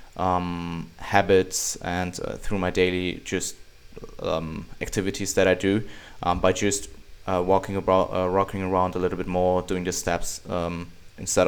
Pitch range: 90-100 Hz